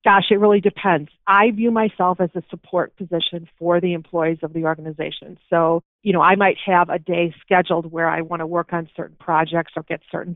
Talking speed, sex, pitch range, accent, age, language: 215 wpm, female, 165-185 Hz, American, 40-59, English